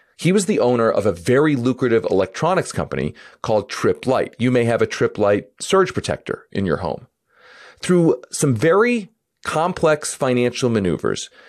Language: English